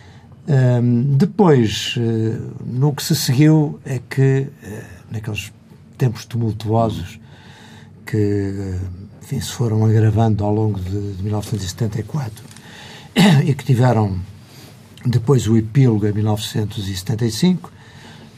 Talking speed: 95 wpm